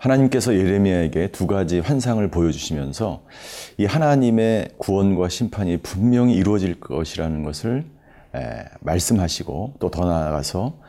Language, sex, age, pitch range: Korean, male, 40-59, 90-125 Hz